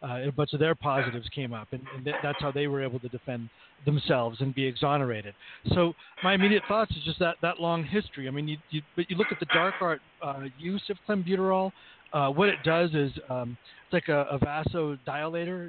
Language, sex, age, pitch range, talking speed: English, male, 40-59, 135-170 Hz, 220 wpm